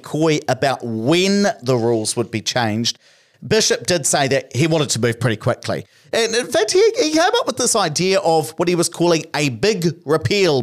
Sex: male